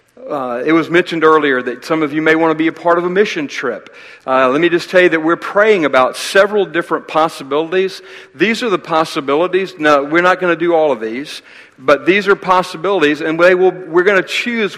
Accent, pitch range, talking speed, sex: American, 140-170 Hz, 225 wpm, male